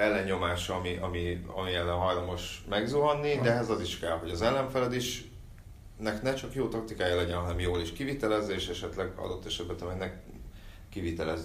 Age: 30-49